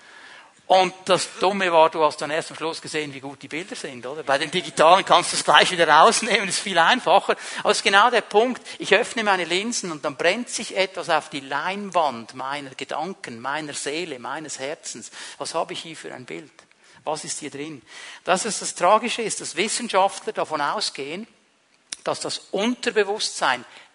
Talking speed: 195 wpm